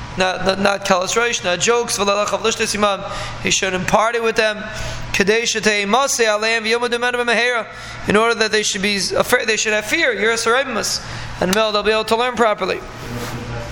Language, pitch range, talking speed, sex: English, 200-230 Hz, 125 wpm, male